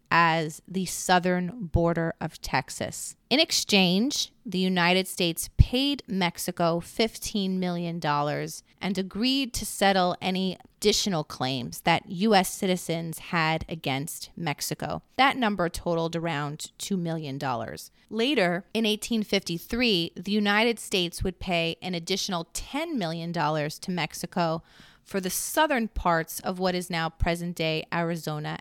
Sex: female